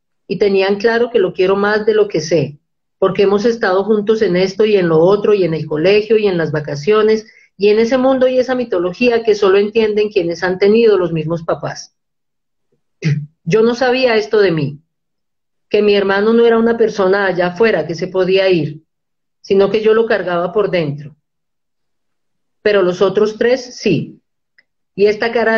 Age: 40-59